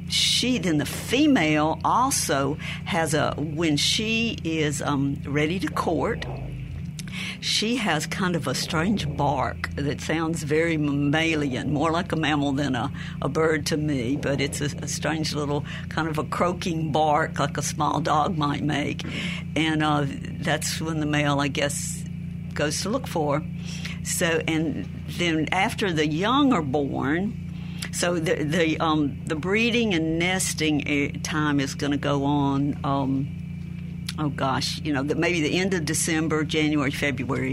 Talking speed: 155 wpm